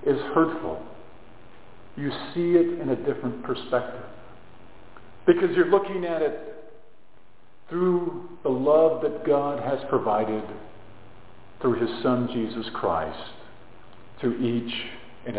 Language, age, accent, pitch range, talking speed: English, 50-69, American, 120-165 Hz, 115 wpm